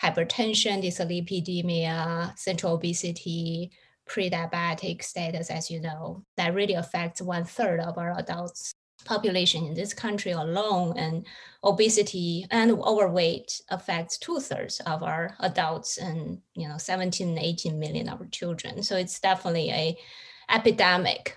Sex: female